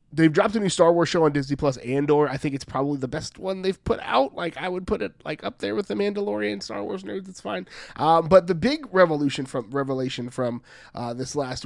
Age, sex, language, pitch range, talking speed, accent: 20-39, male, English, 135-180 Hz, 250 wpm, American